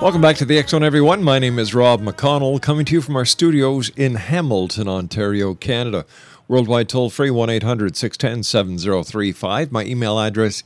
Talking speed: 150 wpm